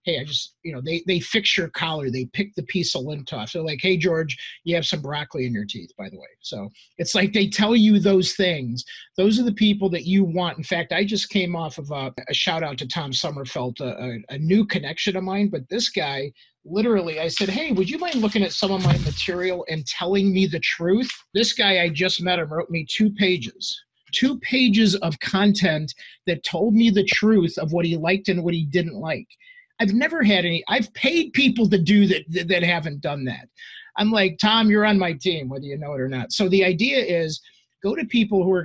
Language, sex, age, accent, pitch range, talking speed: English, male, 50-69, American, 150-200 Hz, 235 wpm